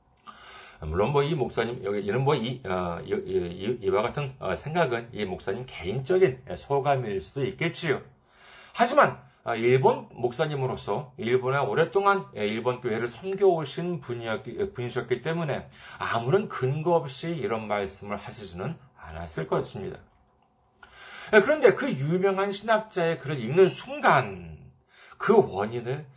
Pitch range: 125-200 Hz